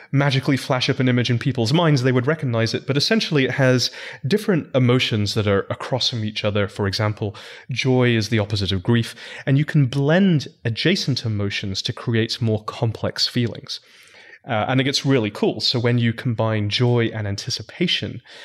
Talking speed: 180 wpm